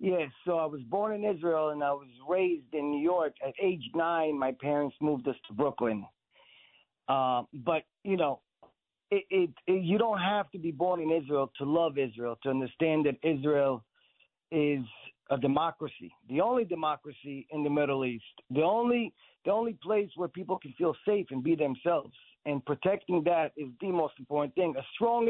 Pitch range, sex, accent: 145-190 Hz, male, American